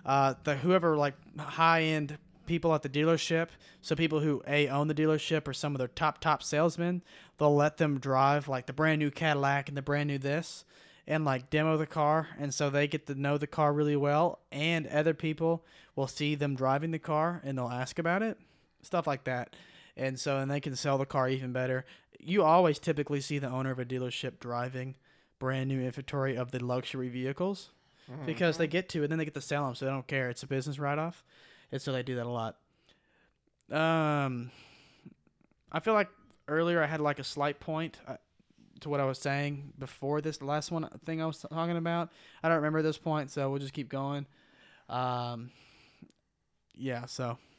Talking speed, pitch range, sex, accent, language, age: 205 wpm, 135-160 Hz, male, American, English, 20-39